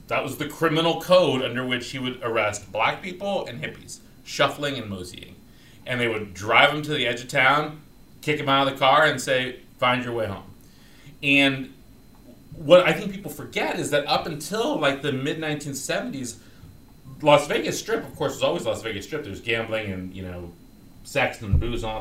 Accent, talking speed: American, 195 wpm